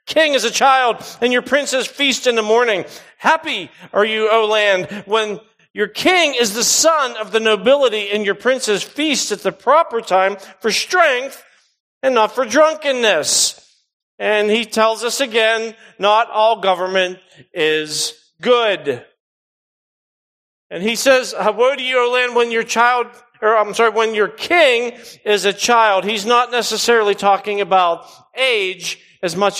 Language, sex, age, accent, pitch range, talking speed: English, male, 40-59, American, 195-255 Hz, 160 wpm